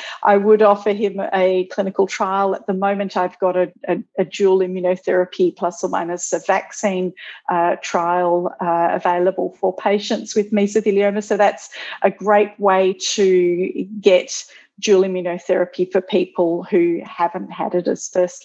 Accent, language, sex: Australian, English, female